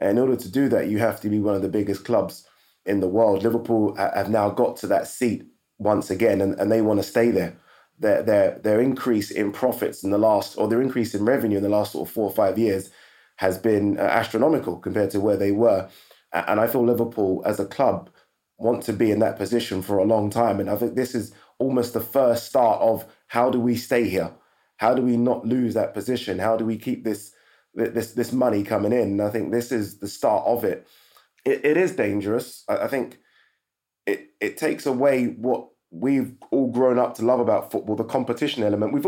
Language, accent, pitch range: English, British, 105-125 Hz